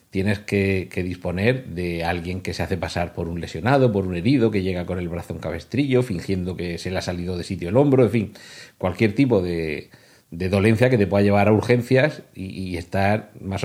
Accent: Spanish